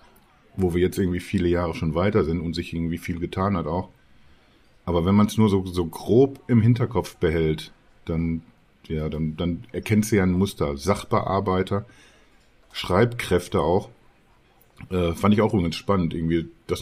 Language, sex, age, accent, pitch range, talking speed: German, male, 50-69, German, 85-110 Hz, 170 wpm